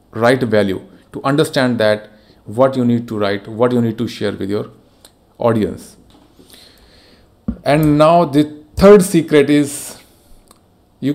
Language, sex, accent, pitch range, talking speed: Hindi, male, native, 110-145 Hz, 135 wpm